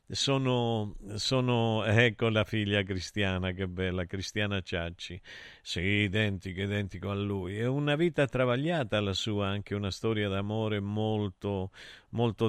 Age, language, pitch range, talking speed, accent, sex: 50-69, Italian, 95-125 Hz, 135 wpm, native, male